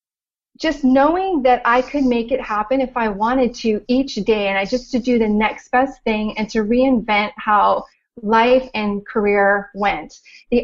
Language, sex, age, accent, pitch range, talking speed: English, female, 30-49, American, 210-250 Hz, 180 wpm